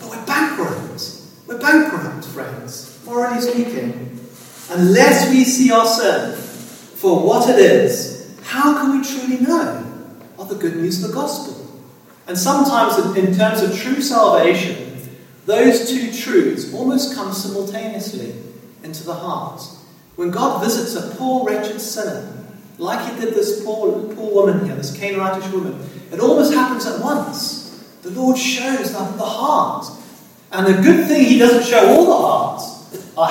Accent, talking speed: British, 150 wpm